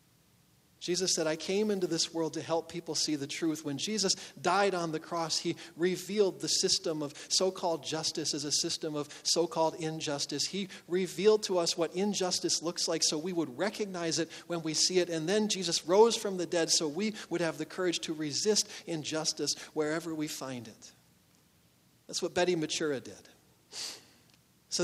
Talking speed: 180 wpm